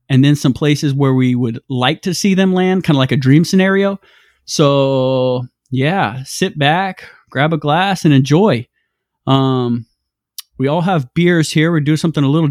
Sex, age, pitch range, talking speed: male, 20-39, 130-155 Hz, 180 wpm